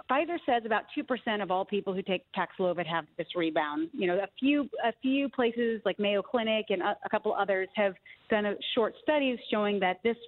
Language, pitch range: English, 185-245 Hz